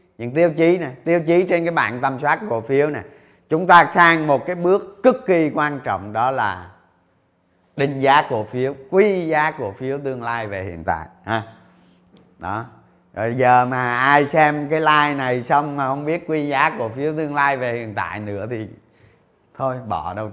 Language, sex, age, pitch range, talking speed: Vietnamese, male, 30-49, 125-180 Hz, 195 wpm